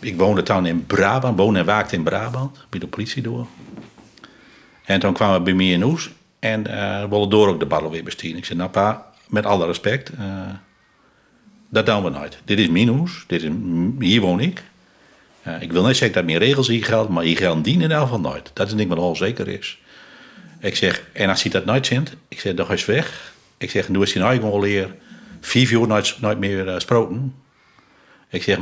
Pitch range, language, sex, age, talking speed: 95-125 Hz, Dutch, male, 50-69, 220 wpm